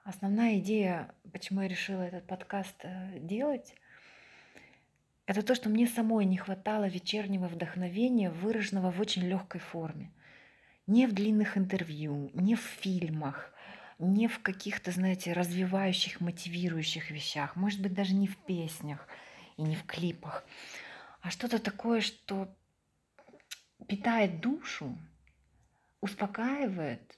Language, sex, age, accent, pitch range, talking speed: Ukrainian, female, 30-49, native, 180-215 Hz, 115 wpm